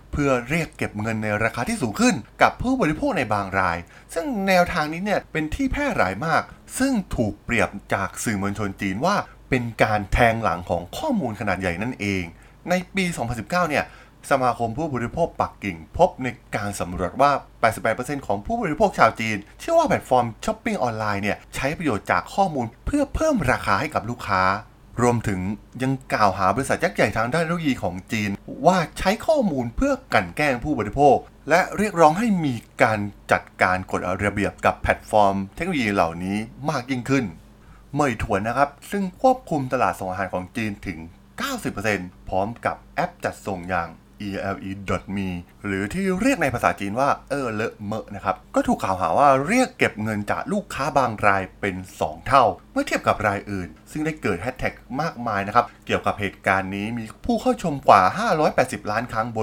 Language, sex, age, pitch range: Thai, male, 20-39, 100-155 Hz